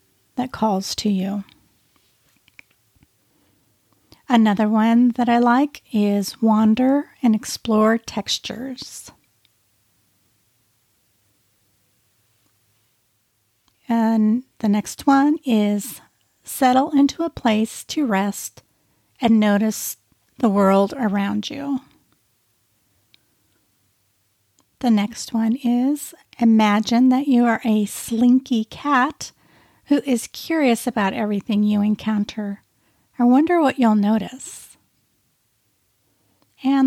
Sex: female